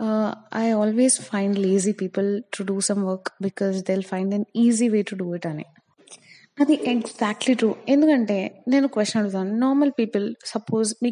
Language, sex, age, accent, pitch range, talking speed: Telugu, female, 20-39, native, 200-250 Hz, 155 wpm